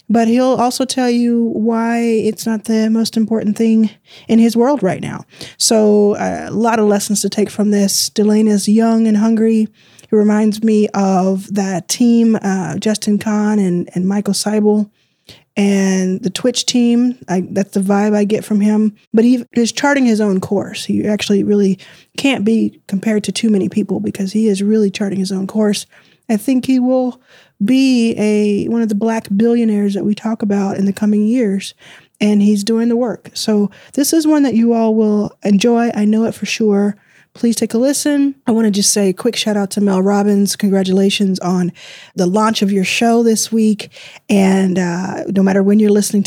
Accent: American